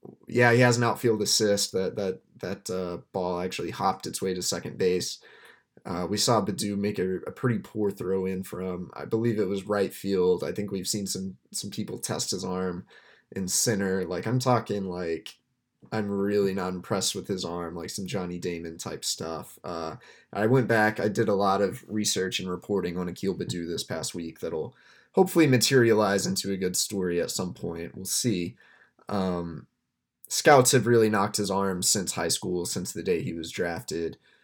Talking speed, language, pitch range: 195 wpm, English, 90-110 Hz